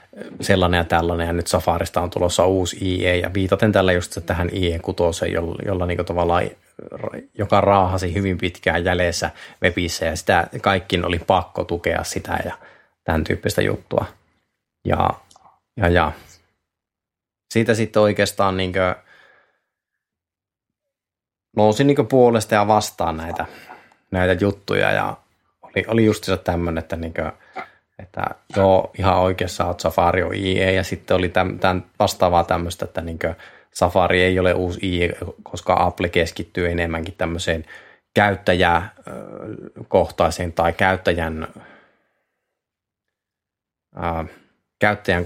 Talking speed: 125 wpm